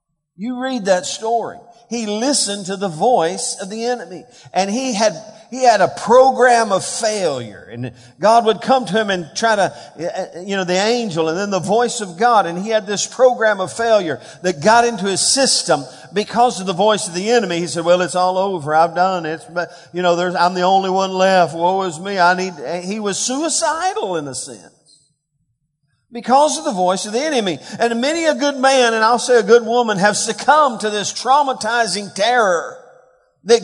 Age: 50-69